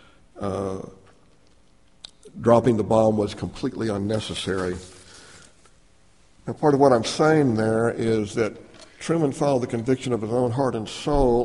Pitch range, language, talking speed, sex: 105-120 Hz, English, 135 wpm, male